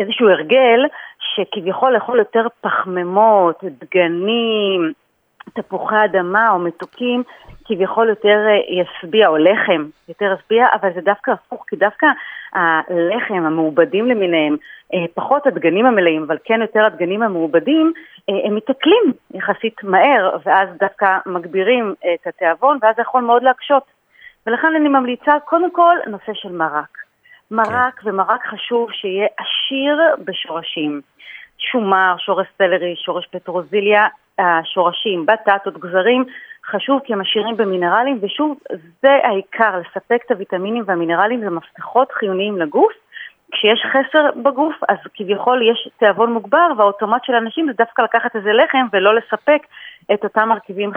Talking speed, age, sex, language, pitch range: 125 wpm, 40-59, female, Hebrew, 185-245 Hz